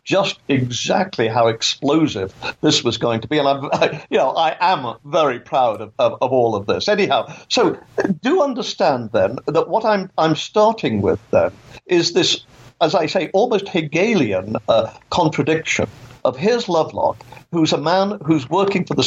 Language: English